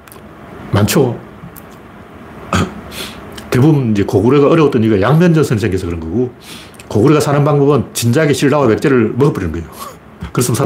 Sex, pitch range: male, 110-170 Hz